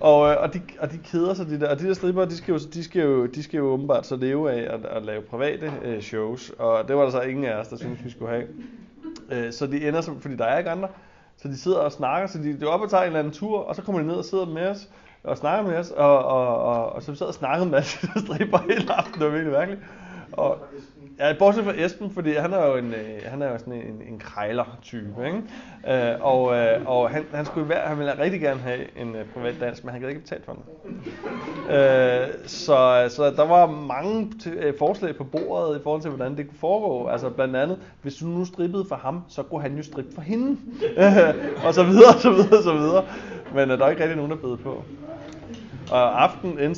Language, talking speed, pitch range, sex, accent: Danish, 250 wpm, 125-175 Hz, male, native